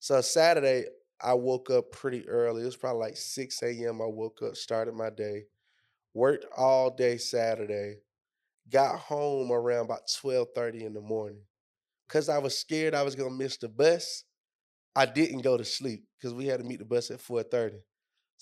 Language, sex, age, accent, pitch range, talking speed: English, male, 20-39, American, 115-140 Hz, 180 wpm